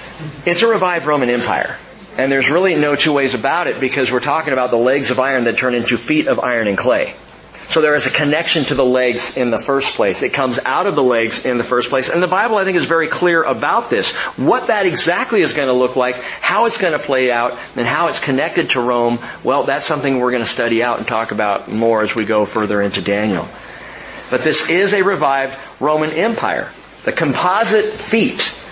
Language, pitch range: English, 125-165 Hz